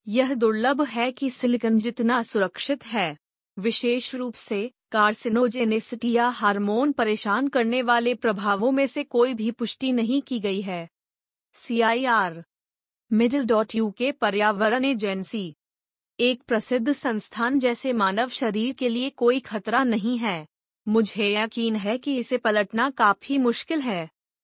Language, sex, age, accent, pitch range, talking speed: Hindi, female, 30-49, native, 210-250 Hz, 135 wpm